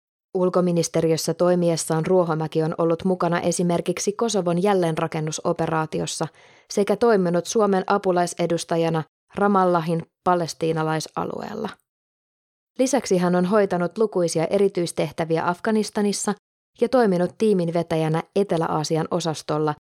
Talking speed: 80 wpm